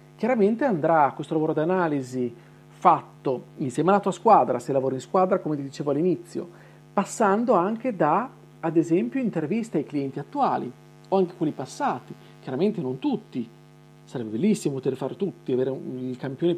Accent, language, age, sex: native, Italian, 40-59, male